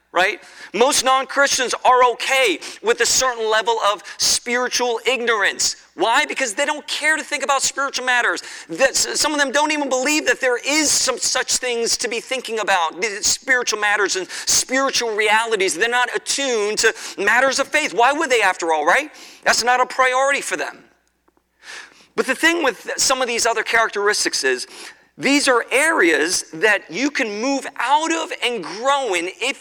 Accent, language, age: American, English, 40-59